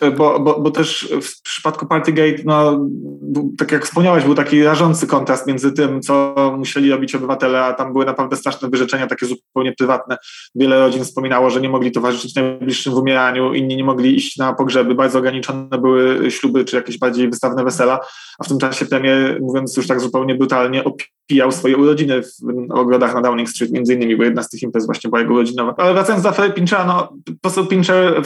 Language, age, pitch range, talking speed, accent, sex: Polish, 20-39, 130-140 Hz, 195 wpm, native, male